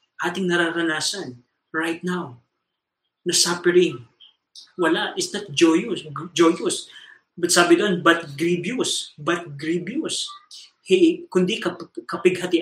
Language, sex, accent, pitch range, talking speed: Filipino, male, native, 160-210 Hz, 105 wpm